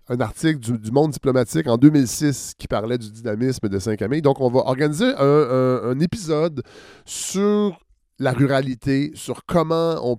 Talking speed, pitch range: 165 wpm, 120-160 Hz